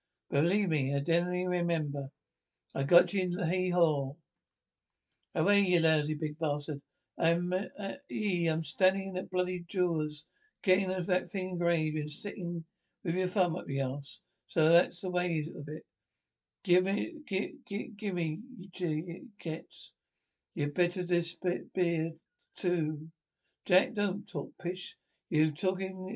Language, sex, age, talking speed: English, male, 60-79, 155 wpm